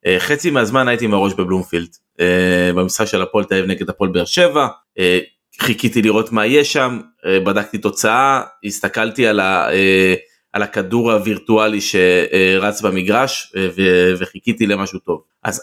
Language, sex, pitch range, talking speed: Hebrew, male, 95-120 Hz, 125 wpm